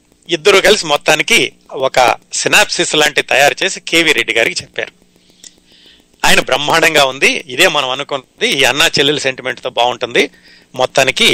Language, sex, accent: Telugu, male, native